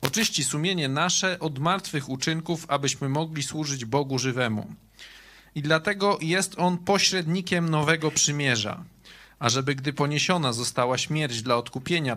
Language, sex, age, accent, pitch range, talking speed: Polish, male, 40-59, native, 135-170 Hz, 125 wpm